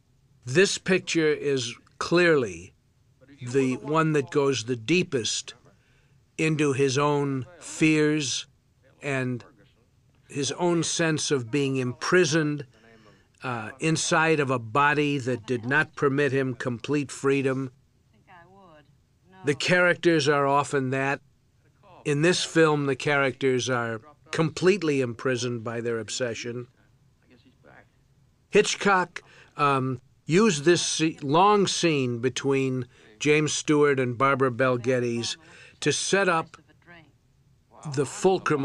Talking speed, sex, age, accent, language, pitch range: 105 wpm, male, 50-69, American, English, 125-150 Hz